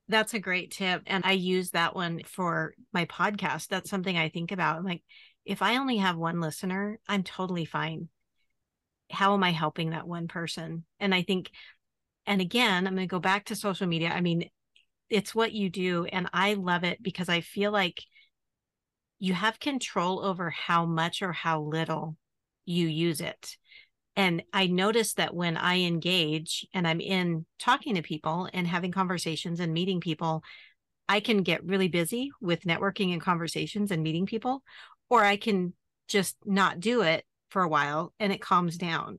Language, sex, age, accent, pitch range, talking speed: English, female, 40-59, American, 165-195 Hz, 180 wpm